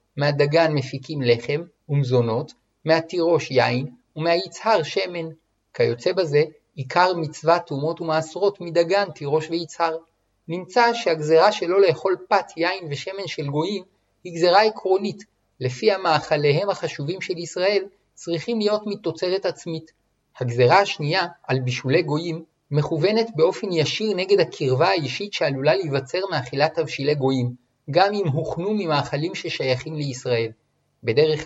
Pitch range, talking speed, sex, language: 145-180 Hz, 115 wpm, male, Hebrew